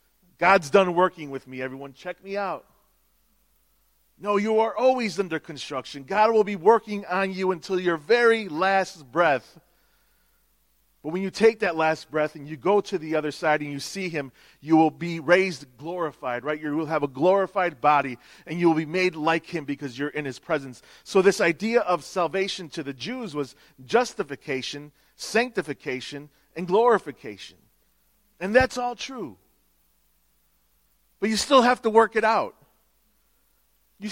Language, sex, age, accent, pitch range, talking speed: English, male, 40-59, American, 145-205 Hz, 165 wpm